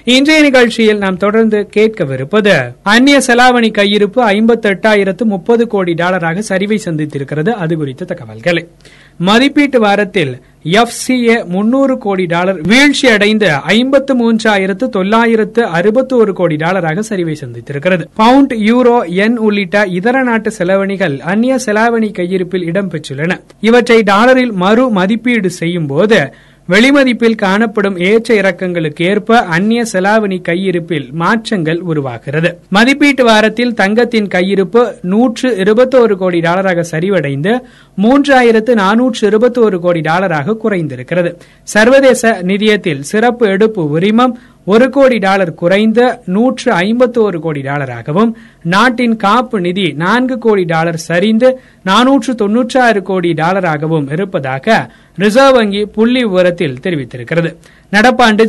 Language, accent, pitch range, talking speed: Tamil, native, 175-235 Hz, 105 wpm